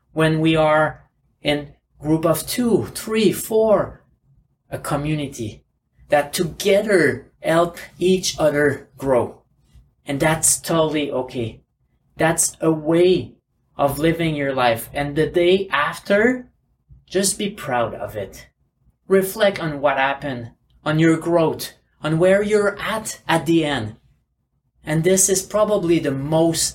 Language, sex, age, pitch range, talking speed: English, male, 30-49, 145-195 Hz, 130 wpm